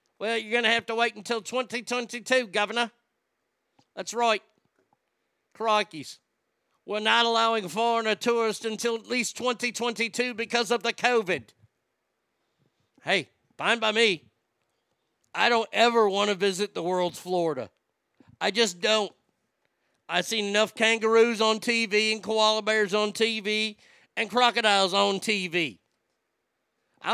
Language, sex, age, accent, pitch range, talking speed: English, male, 50-69, American, 205-235 Hz, 130 wpm